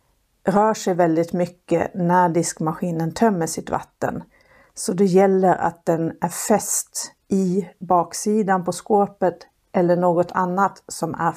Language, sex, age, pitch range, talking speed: Swedish, female, 50-69, 170-210 Hz, 130 wpm